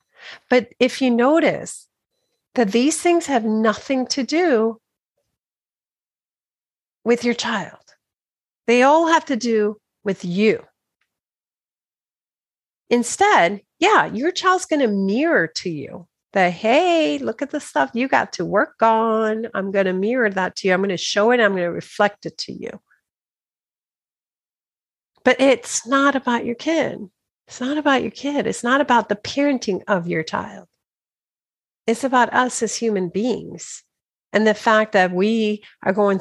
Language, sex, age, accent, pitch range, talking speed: English, female, 40-59, American, 195-260 Hz, 150 wpm